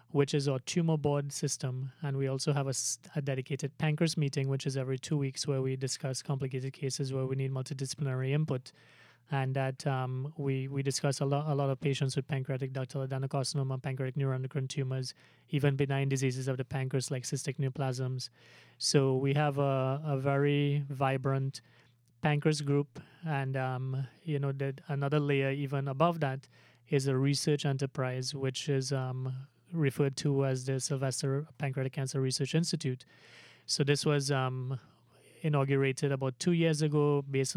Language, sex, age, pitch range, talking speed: English, male, 30-49, 130-145 Hz, 165 wpm